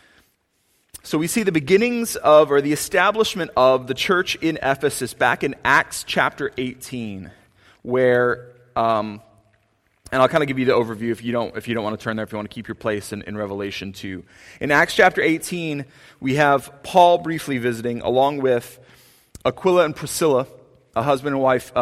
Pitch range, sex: 115-145 Hz, male